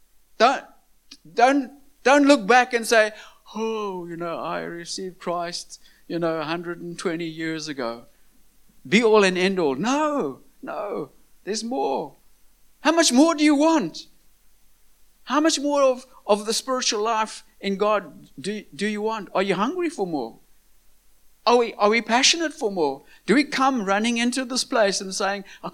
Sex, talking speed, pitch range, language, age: male, 155 wpm, 165-230 Hz, English, 60-79